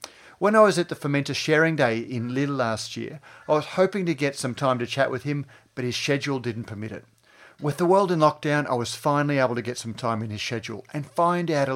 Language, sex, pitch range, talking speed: English, male, 120-155 Hz, 250 wpm